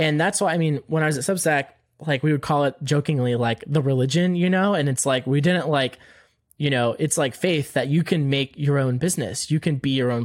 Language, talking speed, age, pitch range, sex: English, 260 wpm, 20-39, 120-150 Hz, male